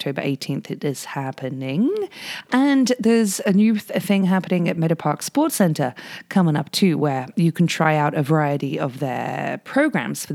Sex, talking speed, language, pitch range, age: female, 180 wpm, English, 145-200 Hz, 30-49